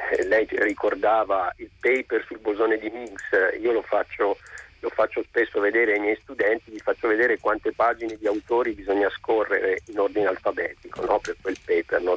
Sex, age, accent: male, 50-69, native